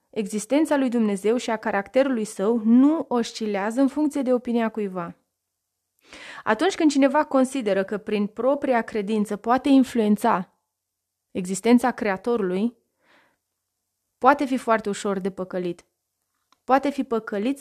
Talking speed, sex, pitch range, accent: 120 wpm, female, 210-265 Hz, native